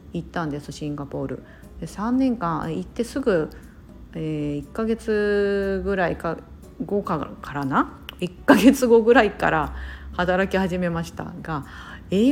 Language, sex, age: Japanese, female, 40-59